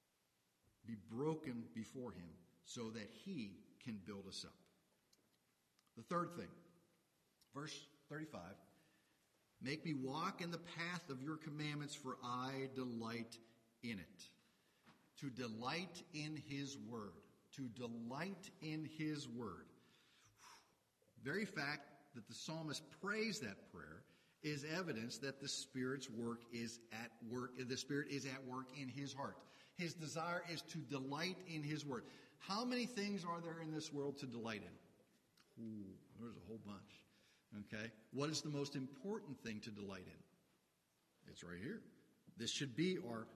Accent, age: American, 50-69